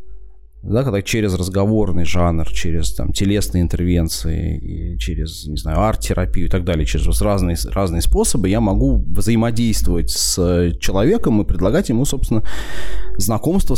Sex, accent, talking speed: male, native, 130 wpm